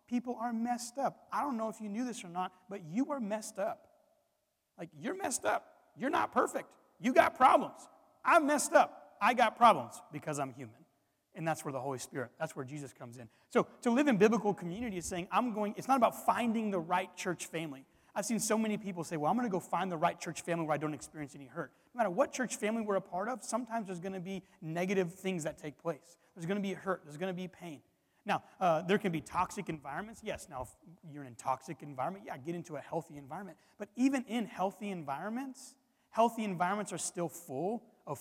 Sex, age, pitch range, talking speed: male, 30-49, 150-220 Hz, 235 wpm